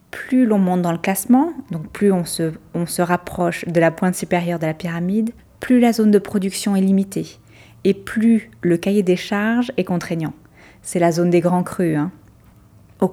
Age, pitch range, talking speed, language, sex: 20-39, 175-220 Hz, 190 wpm, French, female